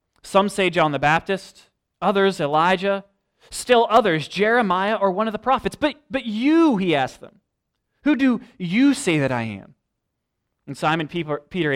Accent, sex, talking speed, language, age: American, male, 160 wpm, English, 20-39